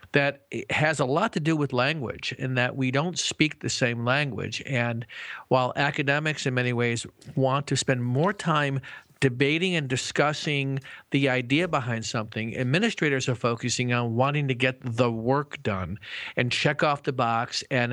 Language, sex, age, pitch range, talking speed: English, male, 50-69, 125-155 Hz, 170 wpm